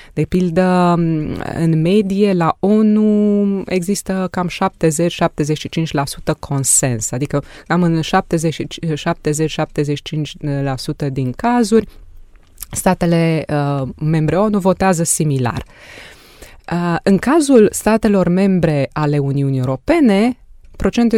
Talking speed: 80 wpm